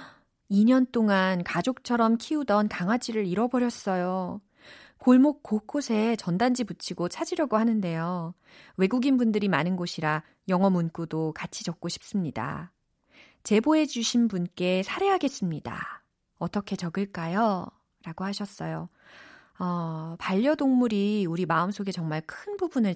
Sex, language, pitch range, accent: female, Korean, 170-235 Hz, native